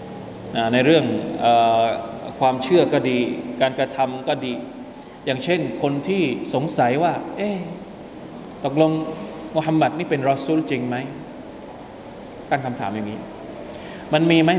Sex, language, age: male, Thai, 20-39